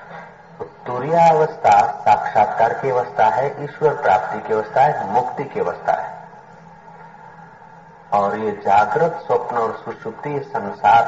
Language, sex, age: Hindi, male, 50-69